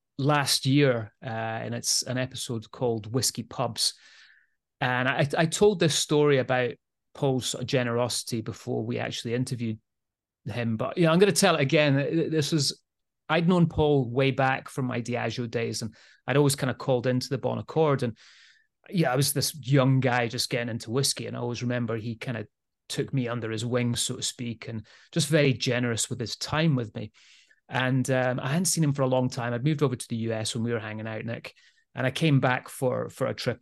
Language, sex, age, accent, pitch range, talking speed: English, male, 30-49, British, 120-140 Hz, 215 wpm